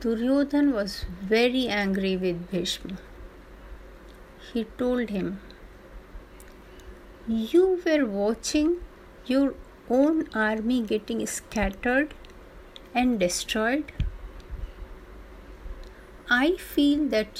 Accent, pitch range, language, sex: native, 210-295 Hz, Hindi, female